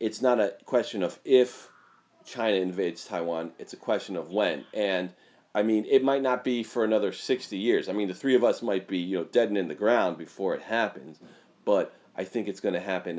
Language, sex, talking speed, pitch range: English, male, 225 wpm, 90-130 Hz